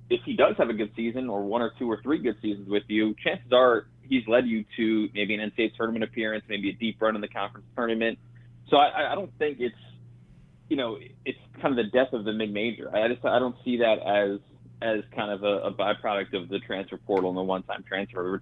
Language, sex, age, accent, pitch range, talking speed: English, male, 20-39, American, 100-120 Hz, 240 wpm